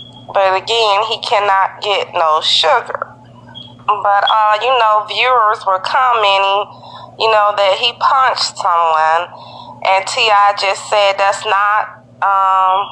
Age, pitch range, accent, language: 30-49, 195-230 Hz, American, English